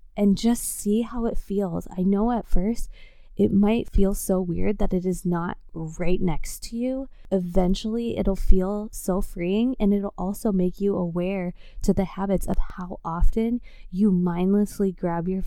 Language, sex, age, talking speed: English, female, 20-39, 170 wpm